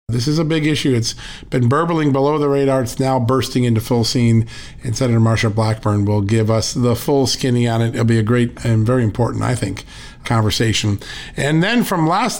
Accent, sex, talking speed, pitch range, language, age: American, male, 210 wpm, 120-145 Hz, English, 50-69